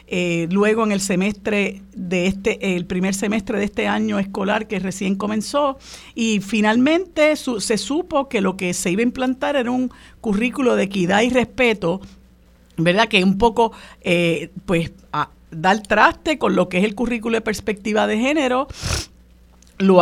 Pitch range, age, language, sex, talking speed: 185-245 Hz, 50-69, Spanish, female, 170 wpm